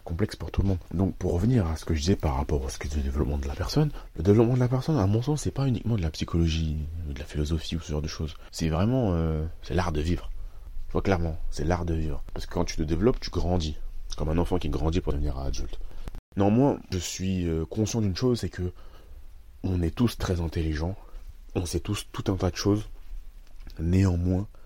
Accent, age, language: French, 30-49, French